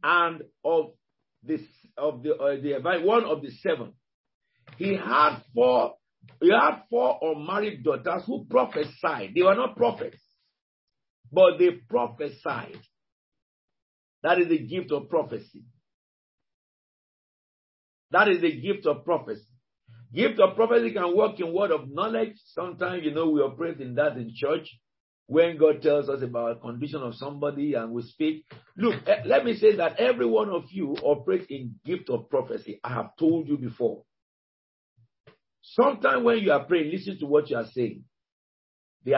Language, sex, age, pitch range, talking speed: English, male, 50-69, 135-195 Hz, 155 wpm